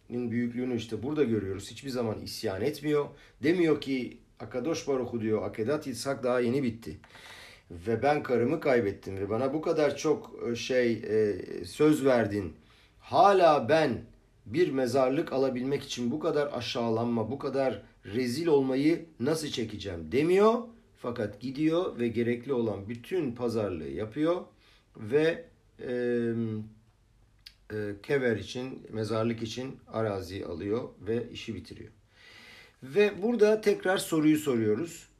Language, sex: Turkish, male